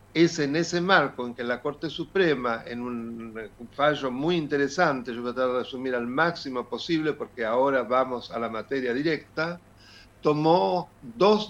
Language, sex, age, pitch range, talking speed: Spanish, male, 60-79, 120-170 Hz, 160 wpm